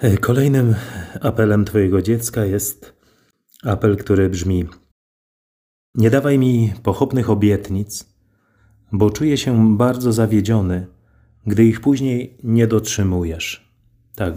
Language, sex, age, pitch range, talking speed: Polish, male, 30-49, 95-110 Hz, 100 wpm